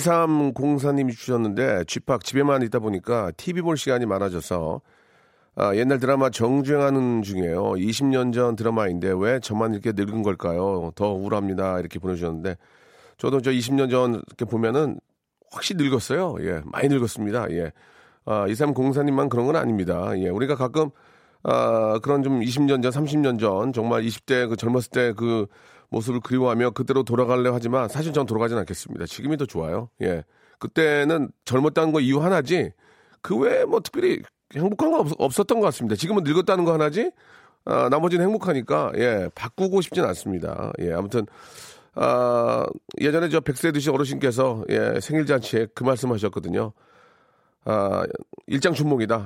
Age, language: 40-59, Korean